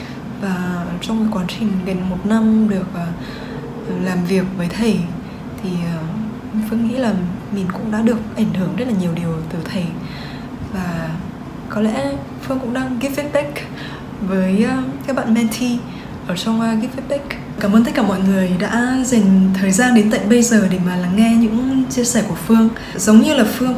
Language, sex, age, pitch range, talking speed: Vietnamese, female, 10-29, 190-240 Hz, 190 wpm